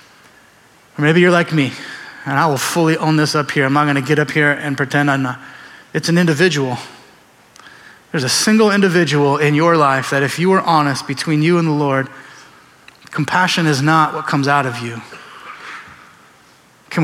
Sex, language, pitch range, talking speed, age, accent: male, English, 135-160 Hz, 185 wpm, 30-49, American